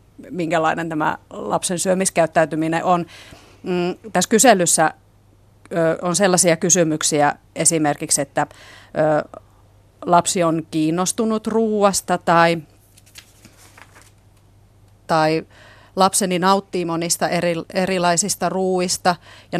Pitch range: 150-180 Hz